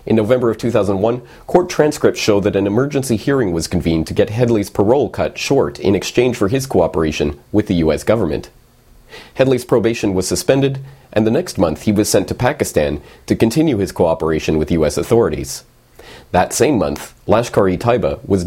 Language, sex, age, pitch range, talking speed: English, male, 40-59, 85-120 Hz, 170 wpm